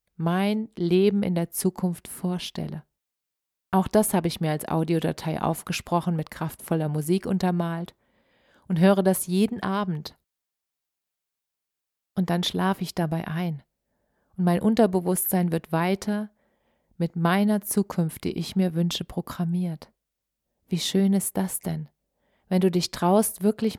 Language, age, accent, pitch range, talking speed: German, 40-59, German, 175-205 Hz, 130 wpm